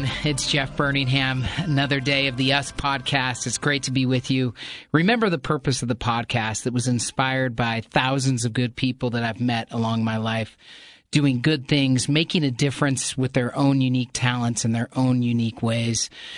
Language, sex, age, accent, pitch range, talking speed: English, male, 40-59, American, 120-140 Hz, 185 wpm